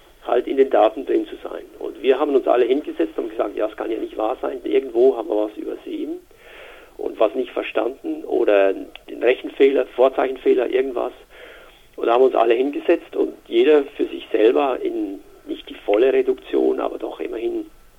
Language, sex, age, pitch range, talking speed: German, male, 50-69, 340-405 Hz, 180 wpm